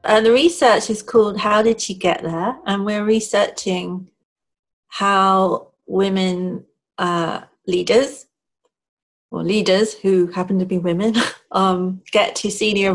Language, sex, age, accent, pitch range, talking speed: English, female, 40-59, British, 175-200 Hz, 130 wpm